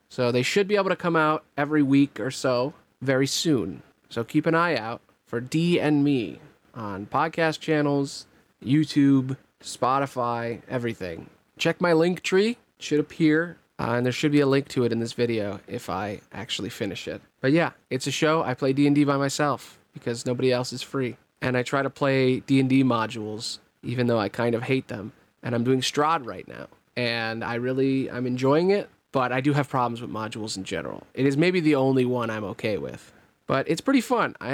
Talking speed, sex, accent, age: 200 wpm, male, American, 30-49